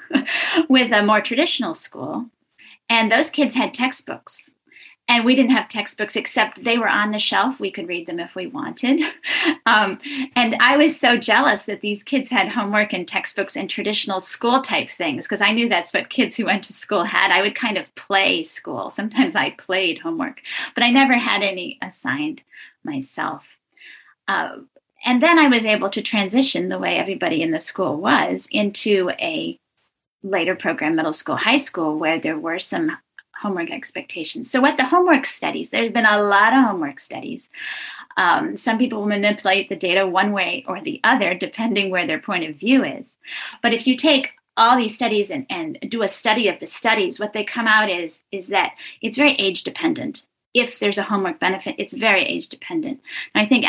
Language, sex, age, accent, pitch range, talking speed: English, female, 30-49, American, 200-285 Hz, 190 wpm